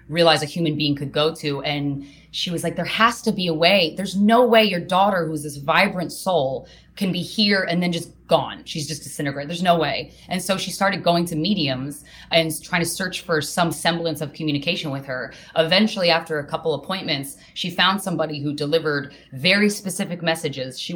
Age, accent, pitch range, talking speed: 20-39, American, 150-185 Hz, 205 wpm